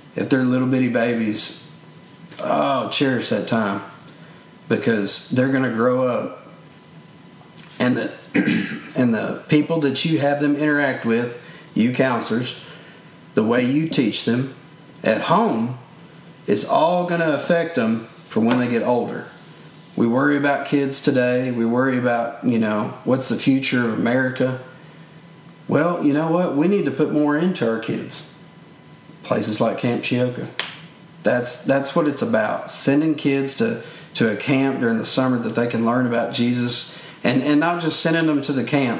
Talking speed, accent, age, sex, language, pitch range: 160 wpm, American, 40-59, male, English, 120-155 Hz